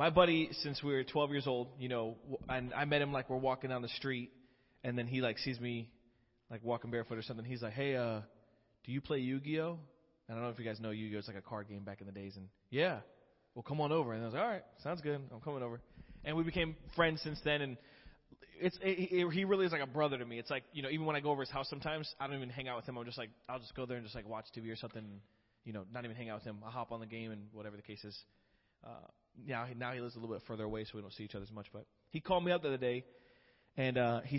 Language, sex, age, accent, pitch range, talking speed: English, male, 20-39, American, 110-135 Hz, 300 wpm